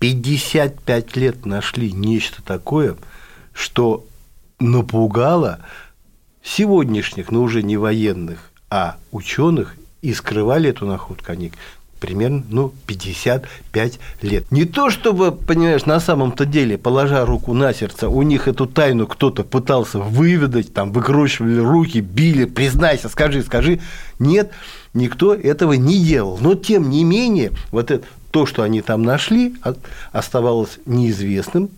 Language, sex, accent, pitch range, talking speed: Russian, male, native, 110-150 Hz, 125 wpm